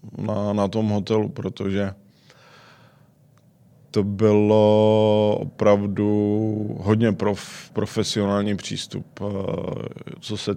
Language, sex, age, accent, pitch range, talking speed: Czech, male, 20-39, native, 100-110 Hz, 75 wpm